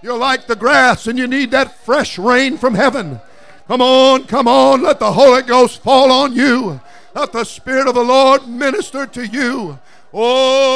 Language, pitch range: English, 230-260 Hz